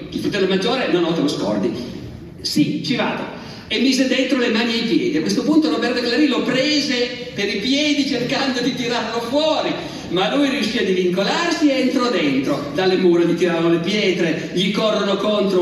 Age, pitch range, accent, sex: 40-59, 170-255 Hz, native, male